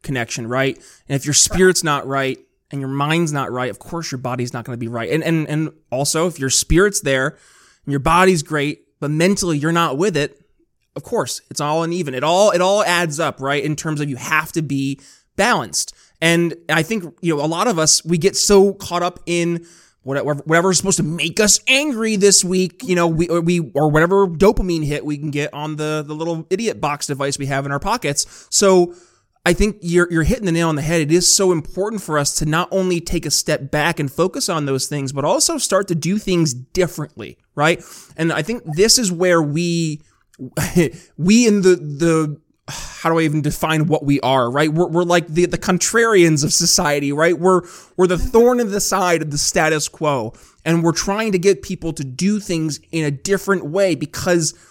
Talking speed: 215 wpm